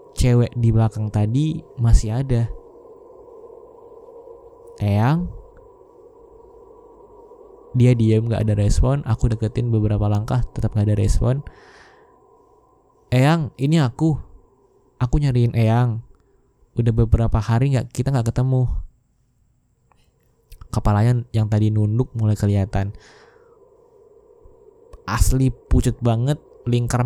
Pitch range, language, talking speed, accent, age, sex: 115-165 Hz, Indonesian, 95 wpm, native, 20-39, male